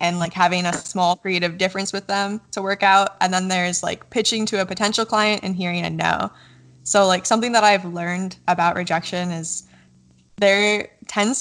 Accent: American